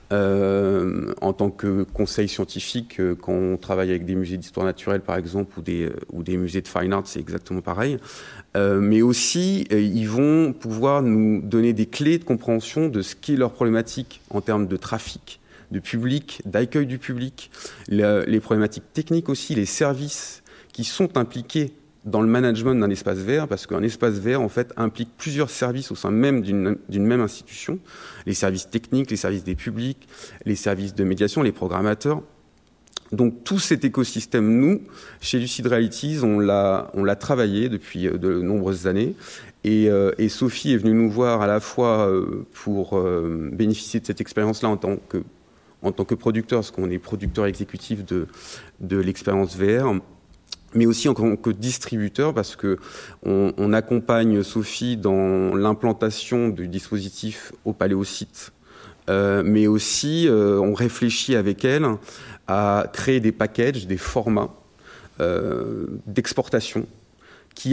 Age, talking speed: 30-49, 165 wpm